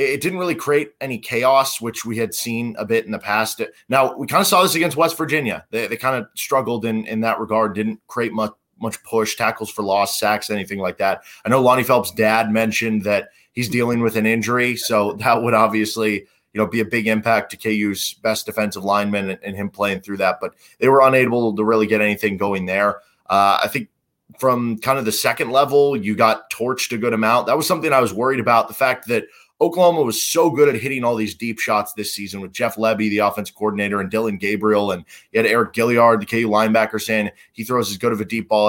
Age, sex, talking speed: 20-39, male, 235 wpm